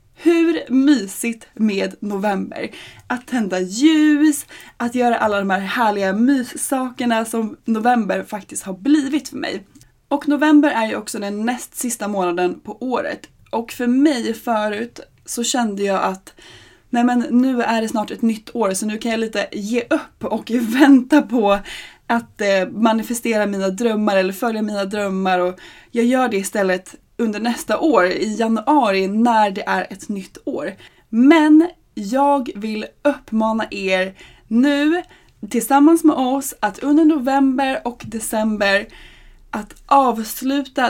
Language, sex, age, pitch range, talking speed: Swedish, female, 20-39, 205-265 Hz, 145 wpm